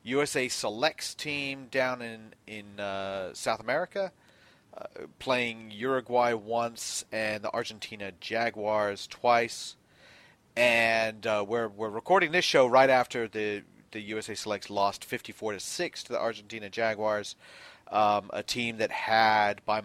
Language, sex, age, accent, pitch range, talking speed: English, male, 40-59, American, 105-130 Hz, 135 wpm